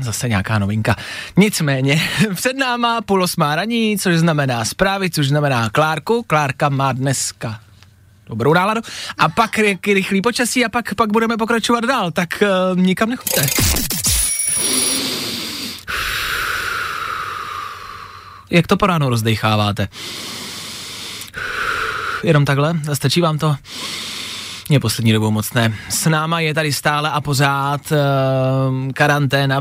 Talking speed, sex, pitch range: 120 wpm, male, 130-185 Hz